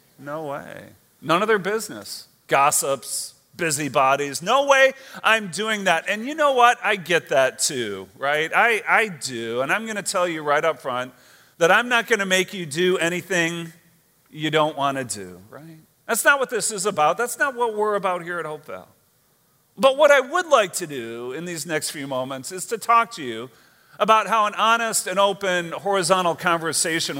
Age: 40-59